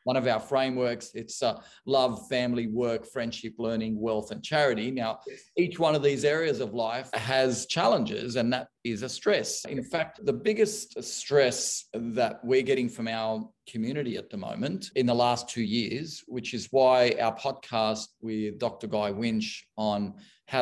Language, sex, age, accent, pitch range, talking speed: English, male, 40-59, Australian, 115-160 Hz, 170 wpm